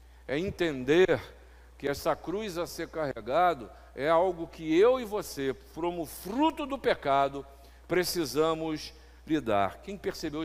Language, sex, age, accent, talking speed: Portuguese, male, 50-69, Brazilian, 125 wpm